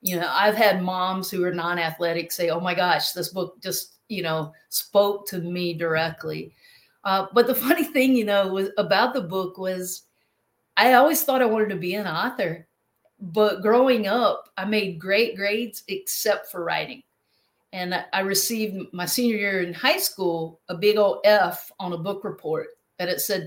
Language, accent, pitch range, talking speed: English, American, 180-225 Hz, 185 wpm